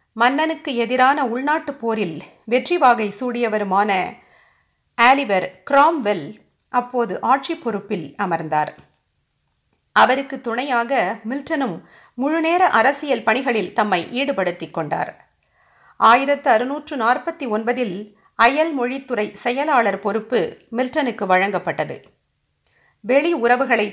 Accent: native